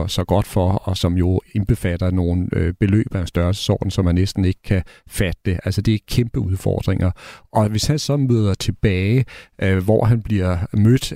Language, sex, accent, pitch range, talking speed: Danish, male, native, 95-115 Hz, 170 wpm